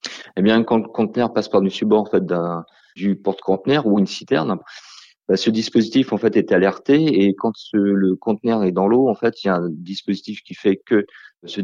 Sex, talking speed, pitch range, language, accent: male, 215 wpm, 95-105 Hz, French, French